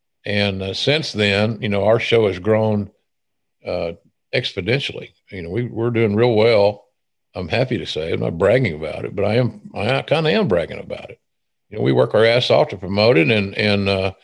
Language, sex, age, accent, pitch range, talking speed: English, male, 50-69, American, 105-120 Hz, 215 wpm